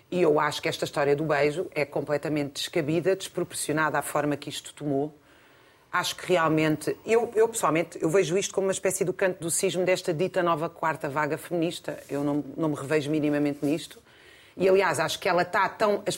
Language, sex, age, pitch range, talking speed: Portuguese, female, 40-59, 160-205 Hz, 200 wpm